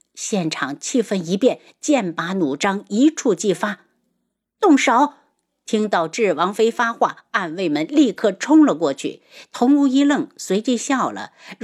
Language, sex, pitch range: Chinese, female, 175-260 Hz